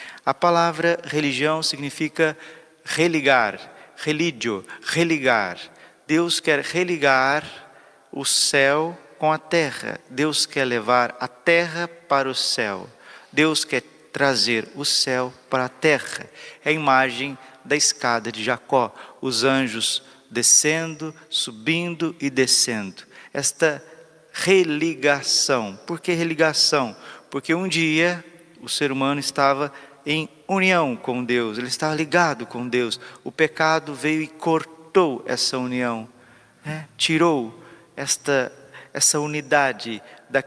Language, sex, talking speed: Portuguese, male, 115 wpm